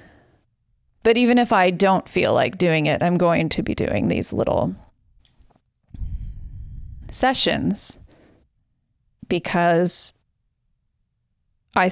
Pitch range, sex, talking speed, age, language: 140-185 Hz, female, 95 wpm, 30-49, English